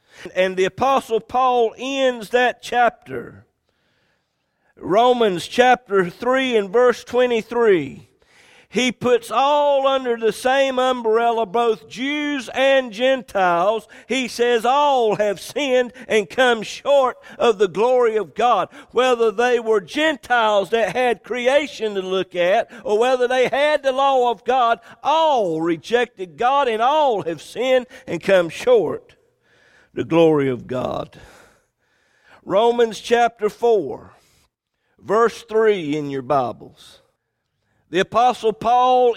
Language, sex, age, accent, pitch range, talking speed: English, male, 50-69, American, 205-260 Hz, 125 wpm